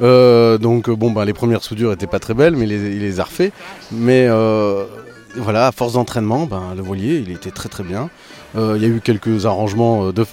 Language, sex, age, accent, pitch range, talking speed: French, male, 30-49, French, 95-120 Hz, 225 wpm